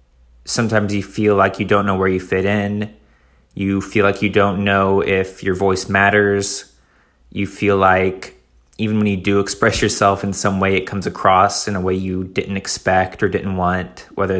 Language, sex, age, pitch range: English, male, 20-39, 95-105 Hz